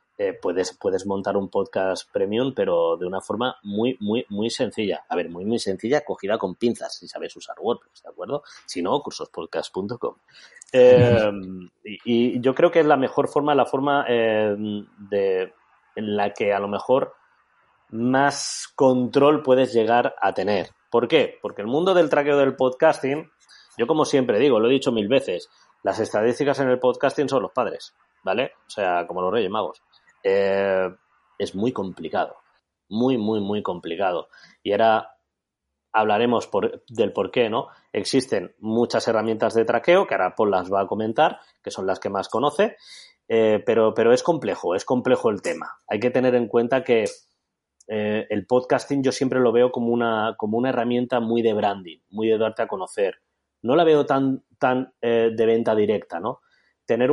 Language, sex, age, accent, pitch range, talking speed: Spanish, male, 30-49, Spanish, 110-145 Hz, 180 wpm